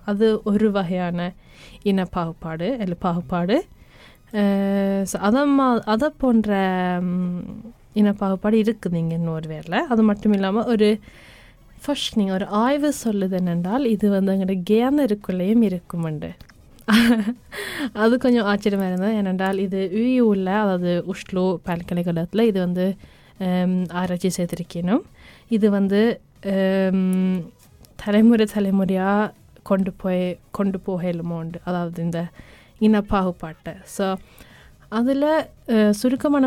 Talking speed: 100 wpm